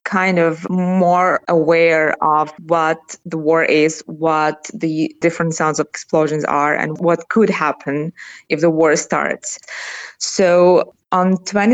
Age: 20-39